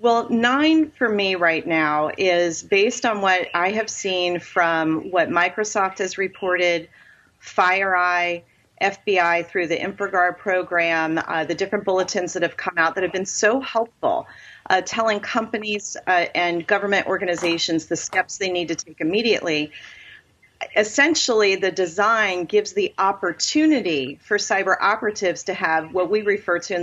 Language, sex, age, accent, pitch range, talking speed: English, female, 40-59, American, 170-220 Hz, 150 wpm